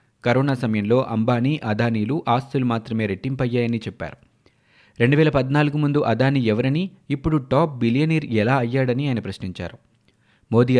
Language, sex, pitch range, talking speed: Telugu, male, 110-135 Hz, 110 wpm